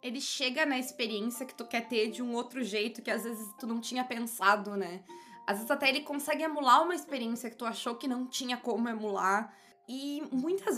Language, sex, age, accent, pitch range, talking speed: Portuguese, female, 20-39, Brazilian, 205-275 Hz, 210 wpm